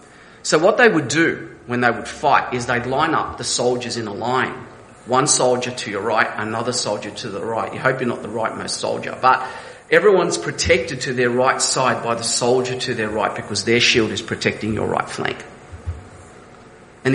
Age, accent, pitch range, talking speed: 40-59, Australian, 115-140 Hz, 205 wpm